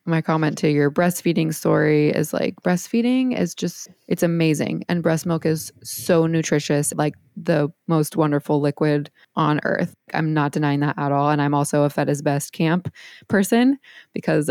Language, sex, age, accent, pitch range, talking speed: English, female, 20-39, American, 150-185 Hz, 175 wpm